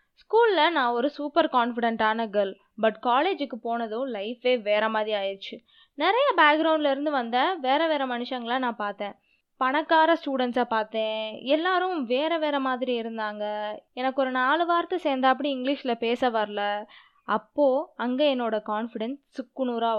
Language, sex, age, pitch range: Tamil, female, 20-39, 225-295 Hz